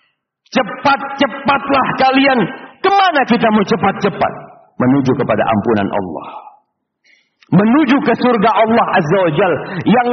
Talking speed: 105 wpm